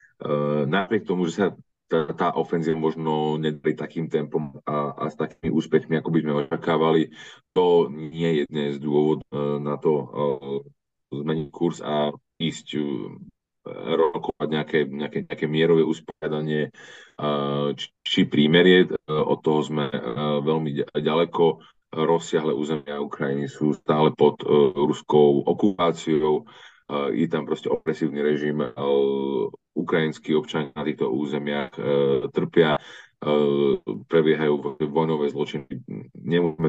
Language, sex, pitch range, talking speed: Slovak, male, 75-80 Hz, 125 wpm